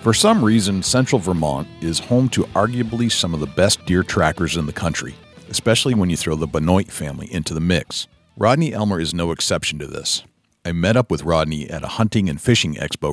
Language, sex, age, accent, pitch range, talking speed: English, male, 40-59, American, 80-110 Hz, 210 wpm